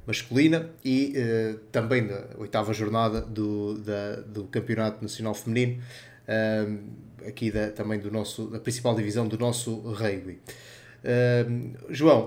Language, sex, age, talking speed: Portuguese, male, 20-39, 130 wpm